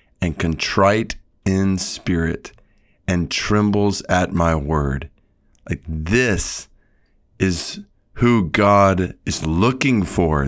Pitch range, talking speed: 90-115 Hz, 95 wpm